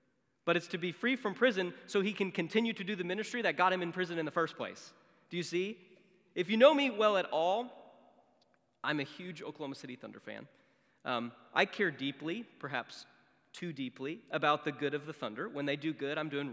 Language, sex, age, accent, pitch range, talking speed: English, male, 30-49, American, 155-210 Hz, 220 wpm